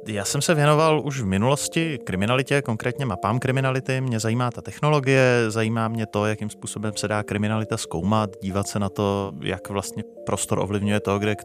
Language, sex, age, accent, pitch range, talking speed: Czech, male, 30-49, native, 105-135 Hz, 185 wpm